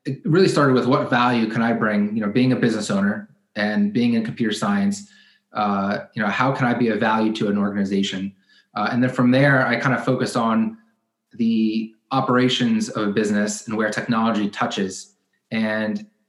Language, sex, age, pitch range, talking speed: English, male, 20-39, 110-130 Hz, 190 wpm